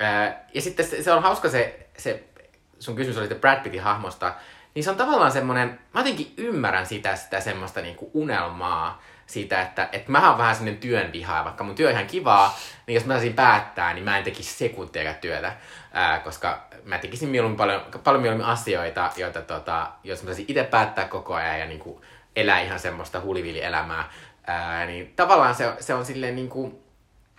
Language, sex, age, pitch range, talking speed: Finnish, male, 20-39, 90-120 Hz, 190 wpm